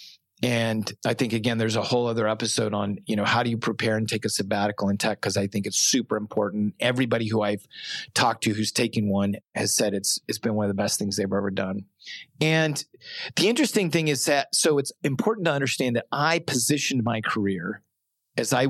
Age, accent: 40-59, American